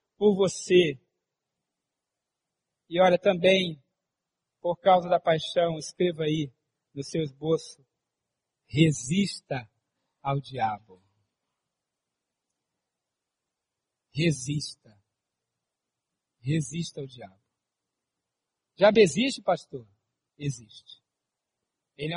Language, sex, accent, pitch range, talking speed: Portuguese, male, Brazilian, 150-215 Hz, 75 wpm